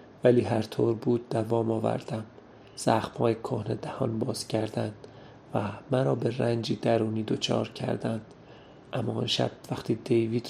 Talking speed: 125 wpm